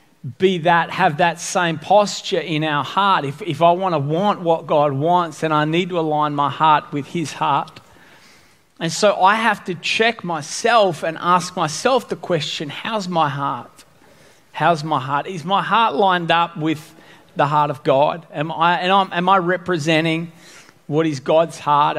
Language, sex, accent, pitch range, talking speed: English, male, Australian, 145-175 Hz, 185 wpm